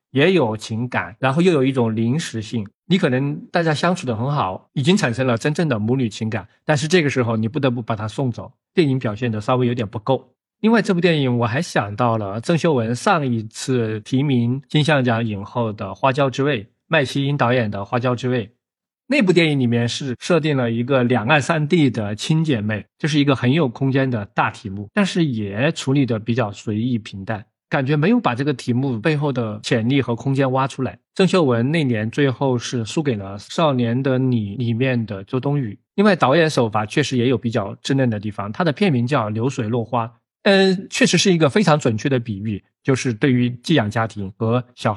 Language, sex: Chinese, male